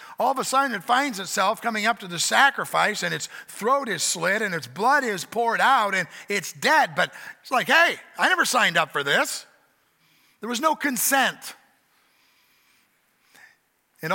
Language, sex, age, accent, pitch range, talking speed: English, male, 50-69, American, 170-235 Hz, 175 wpm